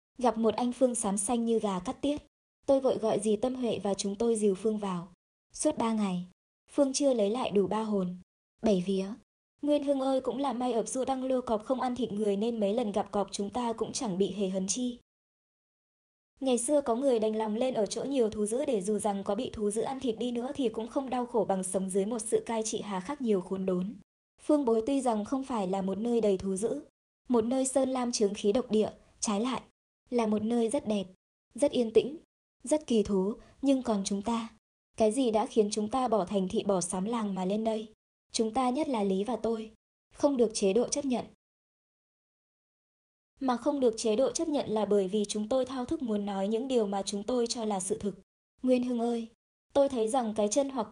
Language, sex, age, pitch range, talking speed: Vietnamese, male, 20-39, 205-250 Hz, 235 wpm